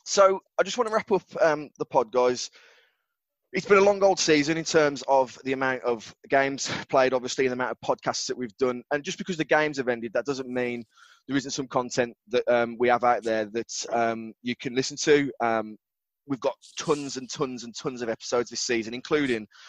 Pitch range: 115-140 Hz